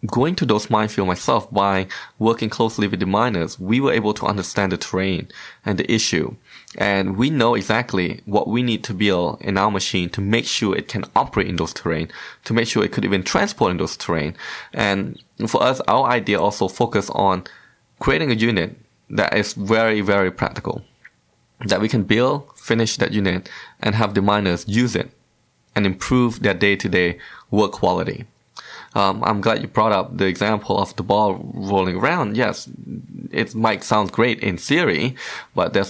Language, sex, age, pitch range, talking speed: English, male, 20-39, 95-110 Hz, 180 wpm